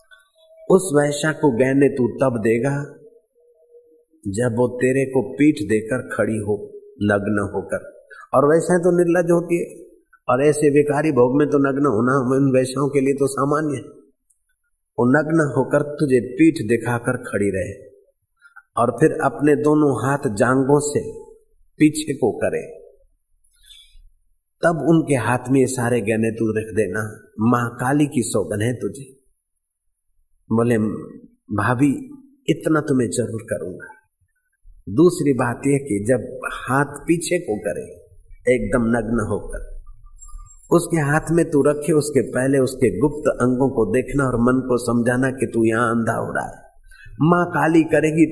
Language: Hindi